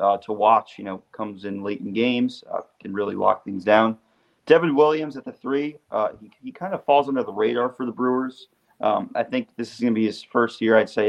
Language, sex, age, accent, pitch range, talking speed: English, male, 30-49, American, 105-120 Hz, 250 wpm